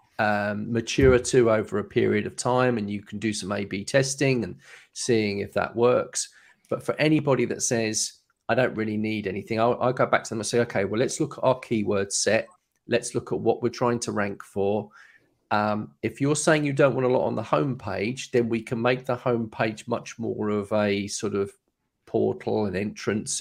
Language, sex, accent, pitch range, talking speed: English, male, British, 105-120 Hz, 210 wpm